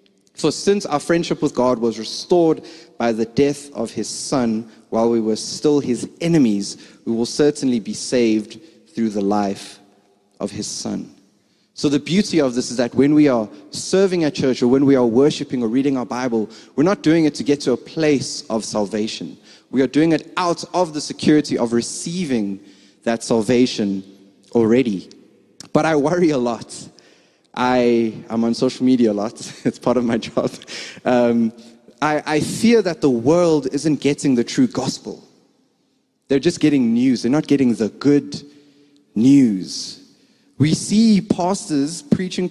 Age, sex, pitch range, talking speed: 30-49, male, 115-170 Hz, 170 wpm